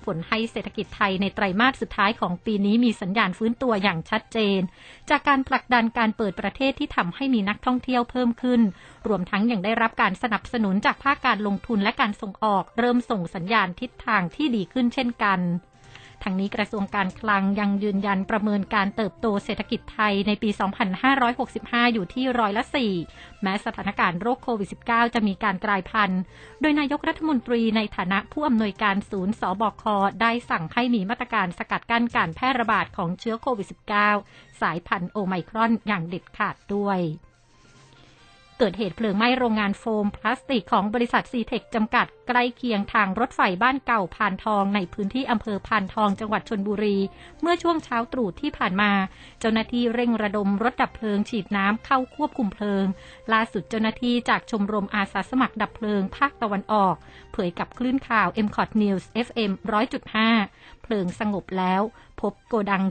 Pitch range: 200-240 Hz